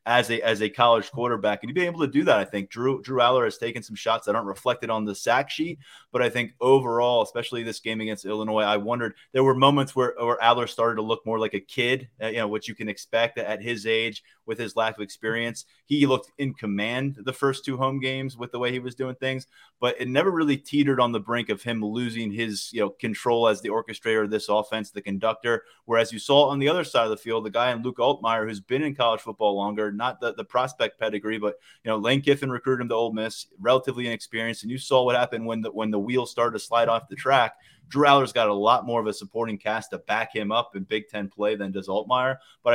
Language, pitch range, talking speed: English, 105-125 Hz, 255 wpm